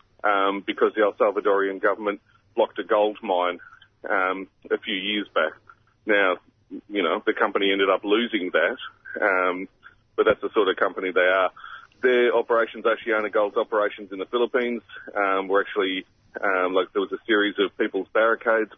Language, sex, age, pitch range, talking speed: English, male, 40-59, 100-120 Hz, 175 wpm